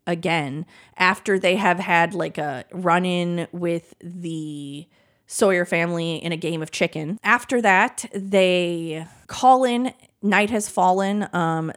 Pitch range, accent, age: 170-210 Hz, American, 20-39